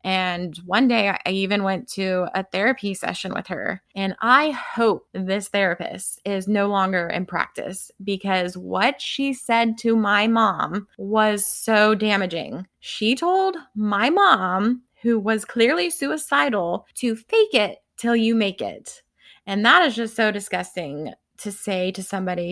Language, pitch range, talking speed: English, 190-235 Hz, 150 wpm